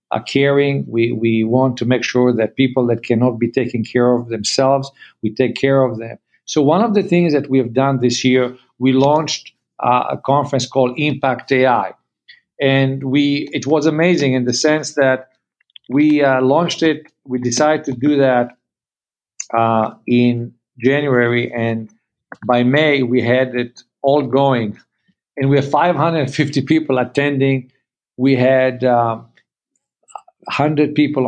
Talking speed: 155 wpm